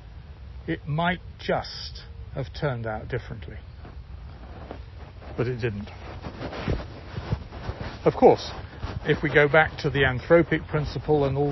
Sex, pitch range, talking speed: male, 100-140 Hz, 115 wpm